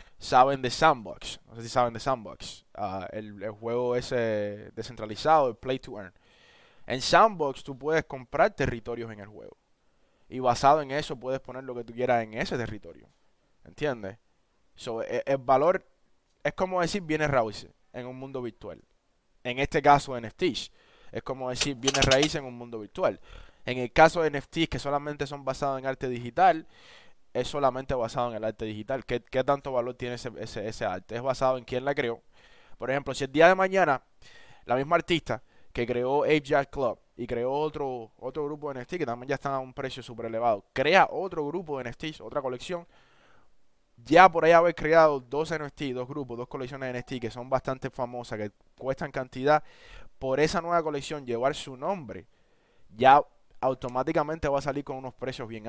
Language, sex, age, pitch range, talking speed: English, male, 20-39, 120-145 Hz, 190 wpm